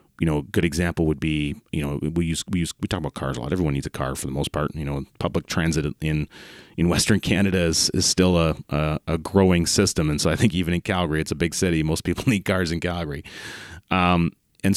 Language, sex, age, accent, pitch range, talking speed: English, male, 30-49, American, 75-95 Hz, 250 wpm